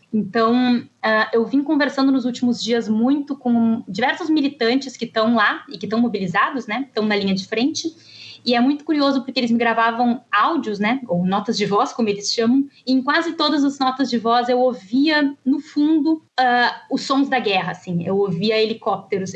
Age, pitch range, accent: 20-39, 210-270 Hz, Brazilian